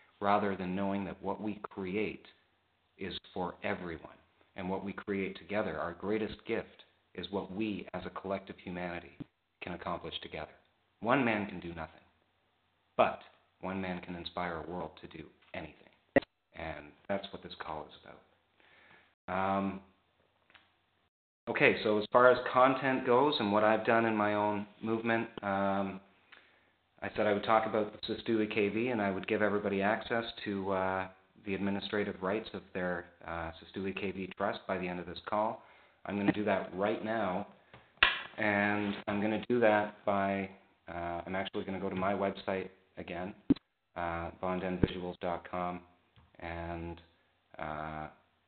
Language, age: English, 40-59